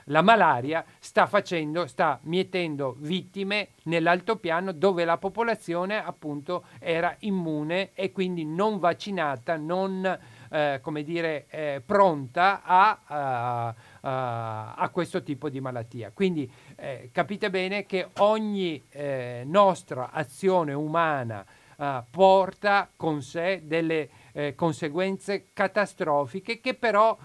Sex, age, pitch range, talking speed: male, 50-69, 145-190 Hz, 115 wpm